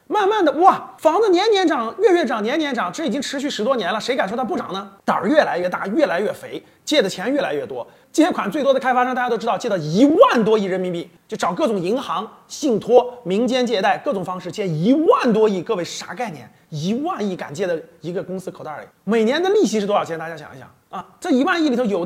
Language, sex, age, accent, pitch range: Chinese, male, 30-49, native, 185-275 Hz